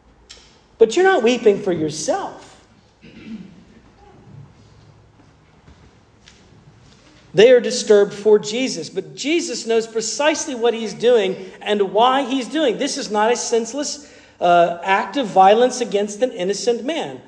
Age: 40-59